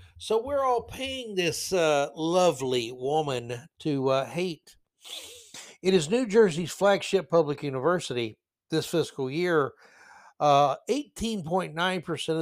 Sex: male